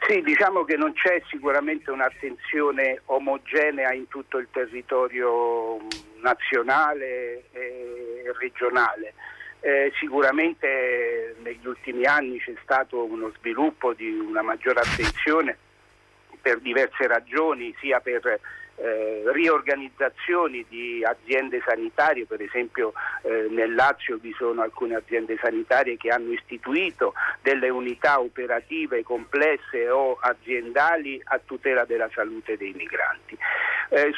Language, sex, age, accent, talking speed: Italian, male, 50-69, native, 110 wpm